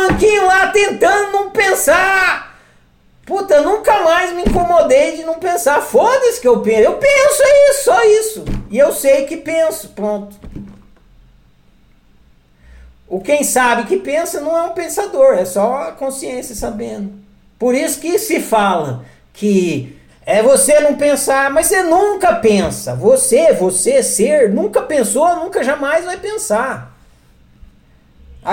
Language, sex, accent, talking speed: Portuguese, male, Brazilian, 140 wpm